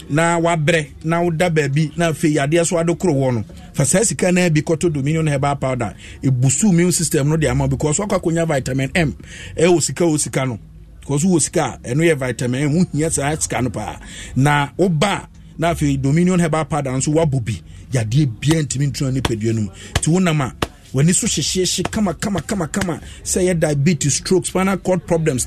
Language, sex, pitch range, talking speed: English, male, 130-175 Hz, 160 wpm